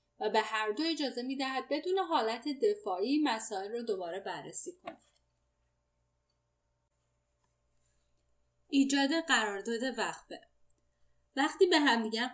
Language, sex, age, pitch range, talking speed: Persian, female, 10-29, 200-270 Hz, 105 wpm